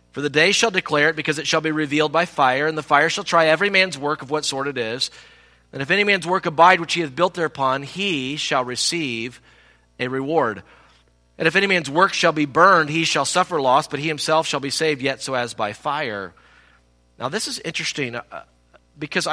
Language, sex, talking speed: English, male, 215 wpm